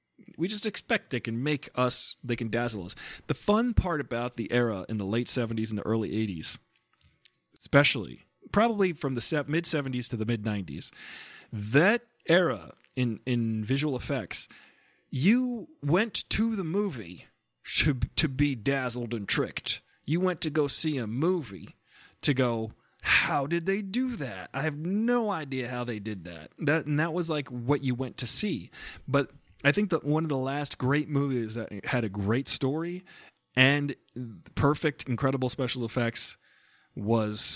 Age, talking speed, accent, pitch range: 40-59, 165 wpm, American, 110-150 Hz